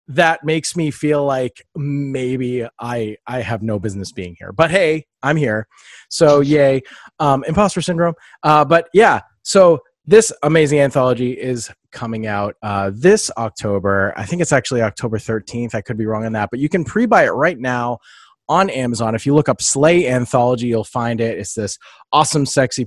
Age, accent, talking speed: 30-49, American, 180 wpm